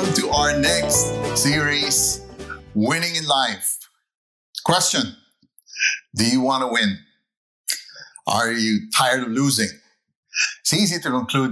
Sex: male